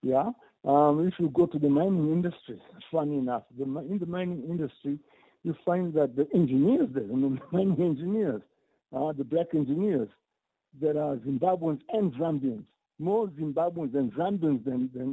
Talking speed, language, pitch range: 165 wpm, English, 145-185 Hz